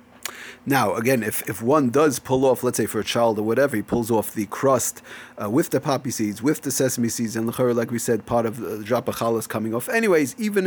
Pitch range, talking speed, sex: 115-150 Hz, 245 wpm, male